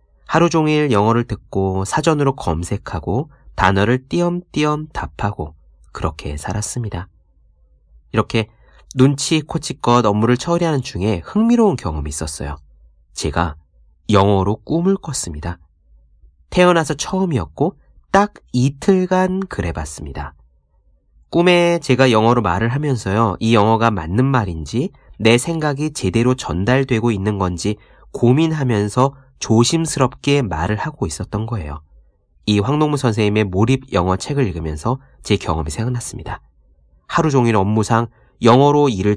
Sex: male